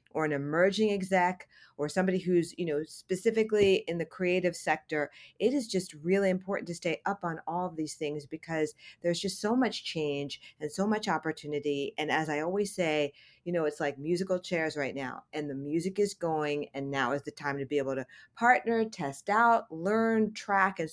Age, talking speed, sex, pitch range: 50-69, 200 wpm, female, 155-190 Hz